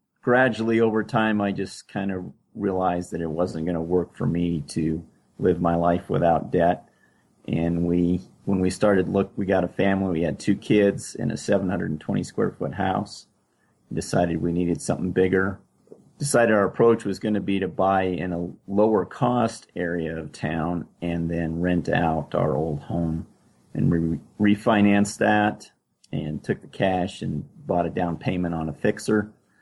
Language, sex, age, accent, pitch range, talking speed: English, male, 30-49, American, 85-100 Hz, 170 wpm